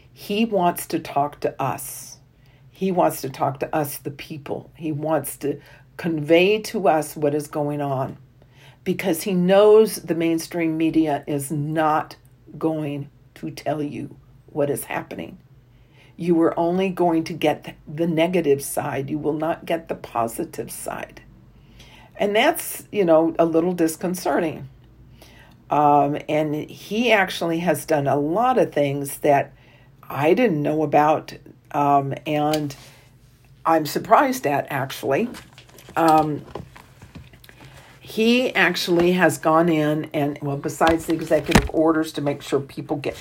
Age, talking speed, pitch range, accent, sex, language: 50-69, 140 wpm, 140-165 Hz, American, female, English